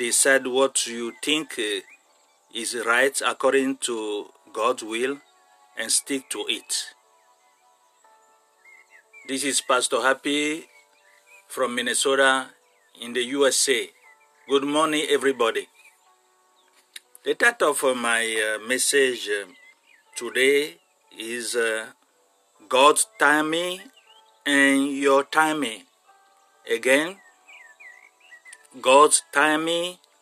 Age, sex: 50-69, male